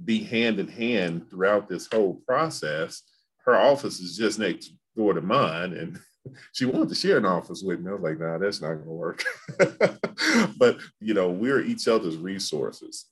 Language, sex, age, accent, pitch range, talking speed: English, male, 40-59, American, 85-115 Hz, 190 wpm